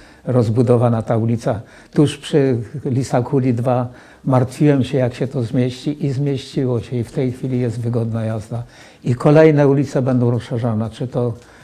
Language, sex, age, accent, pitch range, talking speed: Polish, male, 60-79, native, 115-135 Hz, 160 wpm